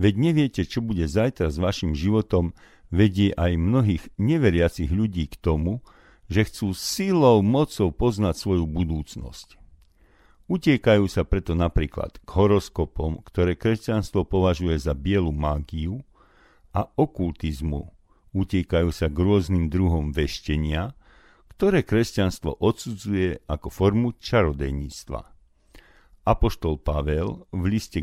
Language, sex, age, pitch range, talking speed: Slovak, male, 50-69, 80-110 Hz, 110 wpm